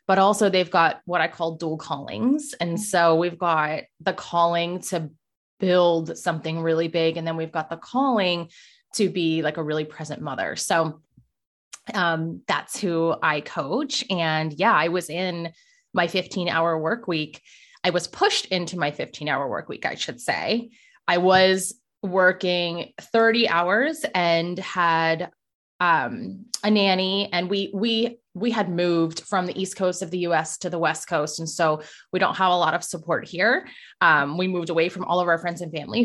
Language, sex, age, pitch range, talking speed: English, female, 20-39, 165-200 Hz, 185 wpm